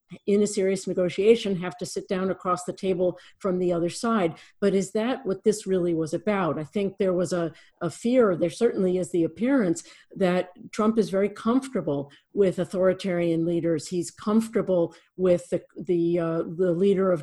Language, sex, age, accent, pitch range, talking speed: English, female, 50-69, American, 170-195 Hz, 180 wpm